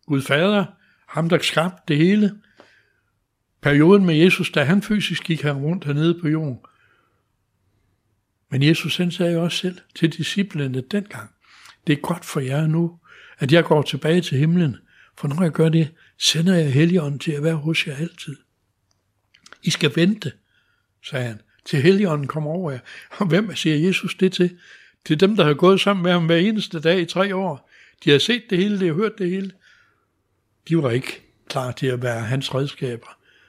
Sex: male